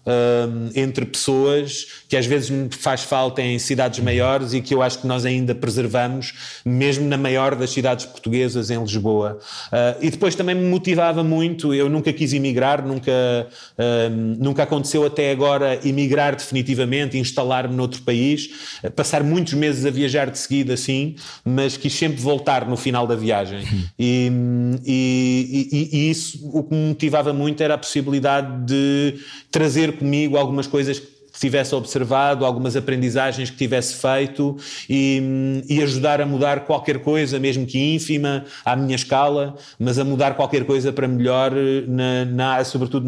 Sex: male